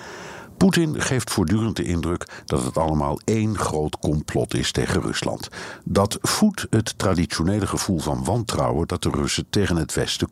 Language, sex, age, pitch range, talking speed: Dutch, male, 60-79, 80-115 Hz, 155 wpm